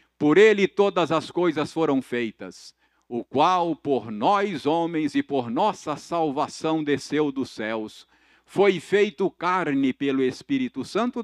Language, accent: Portuguese, Brazilian